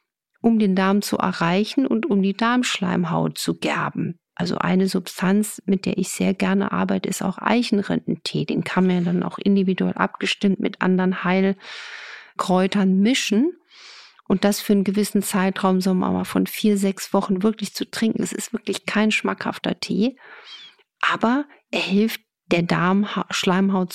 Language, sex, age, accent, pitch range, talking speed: German, female, 50-69, German, 190-230 Hz, 150 wpm